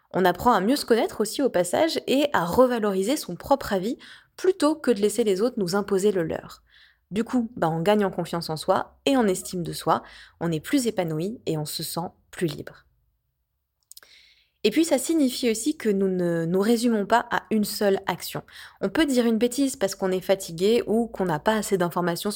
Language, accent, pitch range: French, French, 165-220 Hz